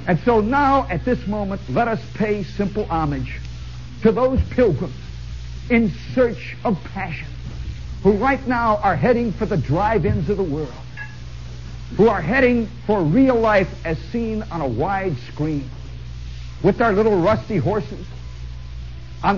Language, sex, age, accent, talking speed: English, male, 50-69, American, 145 wpm